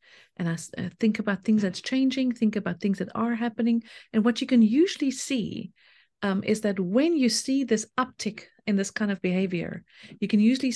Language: English